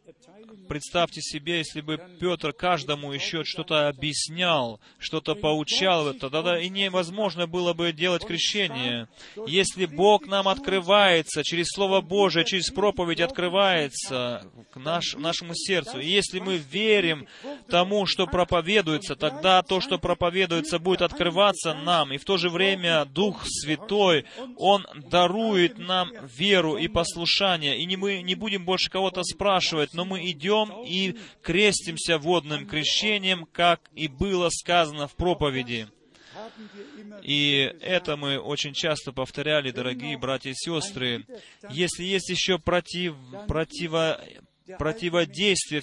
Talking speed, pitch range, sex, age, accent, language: 120 wpm, 155-190 Hz, male, 30-49, native, Russian